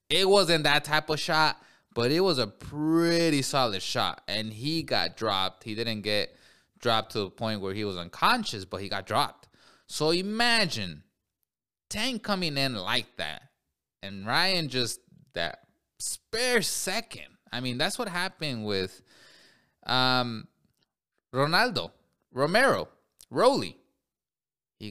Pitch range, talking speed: 120-190 Hz, 135 wpm